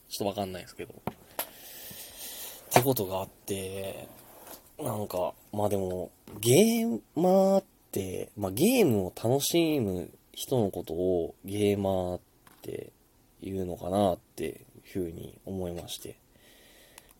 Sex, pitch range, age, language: male, 90-150 Hz, 20-39, Japanese